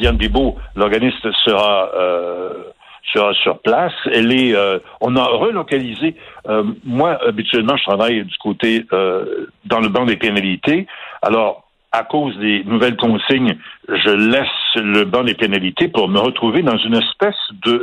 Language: French